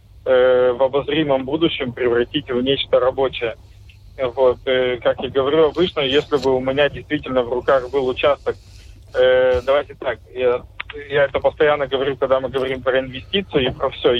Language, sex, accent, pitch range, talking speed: Russian, male, native, 125-145 Hz, 150 wpm